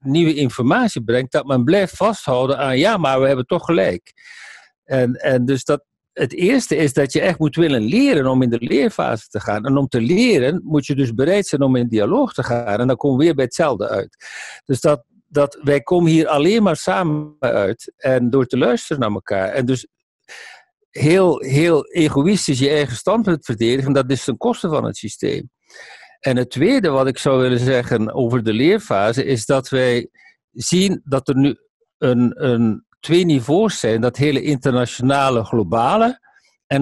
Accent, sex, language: Dutch, male, English